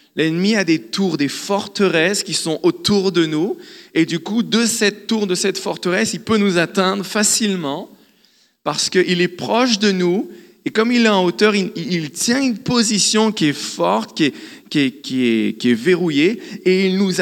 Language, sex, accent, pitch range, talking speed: French, male, French, 165-210 Hz, 200 wpm